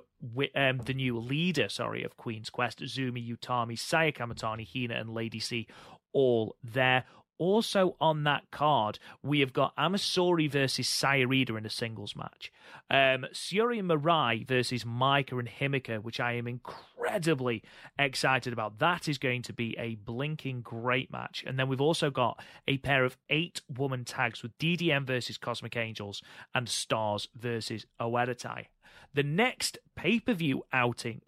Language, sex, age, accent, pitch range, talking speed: English, male, 30-49, British, 120-150 Hz, 150 wpm